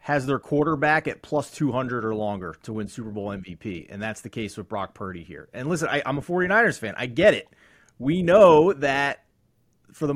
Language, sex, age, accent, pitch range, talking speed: English, male, 30-49, American, 105-150 Hz, 205 wpm